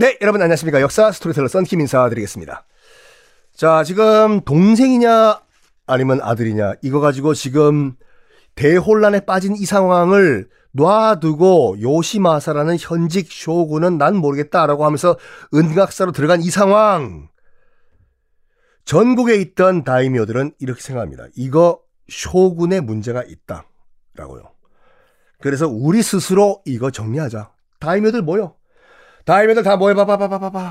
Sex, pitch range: male, 140-195 Hz